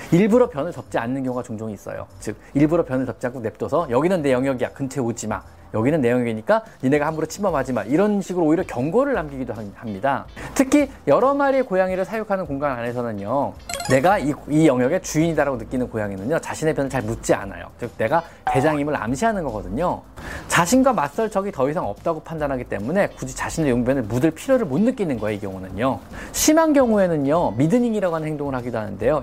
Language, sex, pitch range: Korean, male, 120-195 Hz